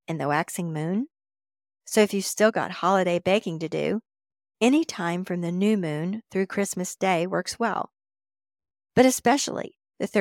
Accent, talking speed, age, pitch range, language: American, 155 wpm, 50-69, 170-215 Hz, English